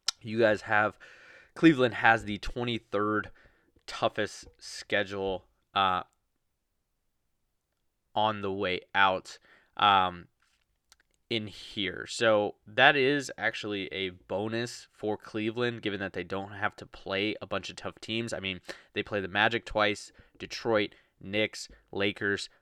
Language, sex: English, male